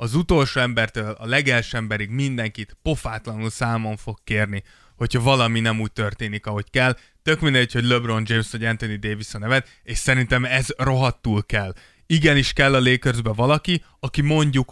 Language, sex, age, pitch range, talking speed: Hungarian, male, 20-39, 110-135 Hz, 165 wpm